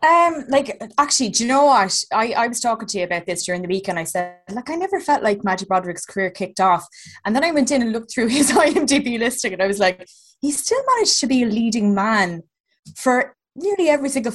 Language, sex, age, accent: English, female, 20-39, Irish